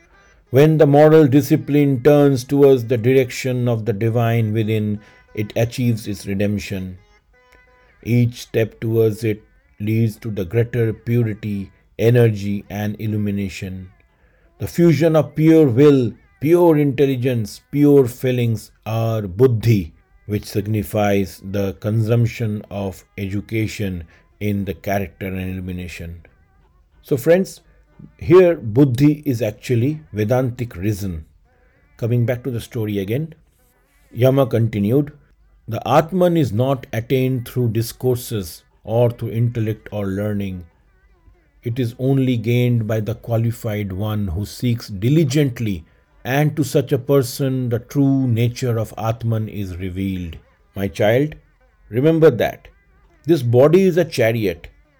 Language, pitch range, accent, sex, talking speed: English, 100-135 Hz, Indian, male, 120 wpm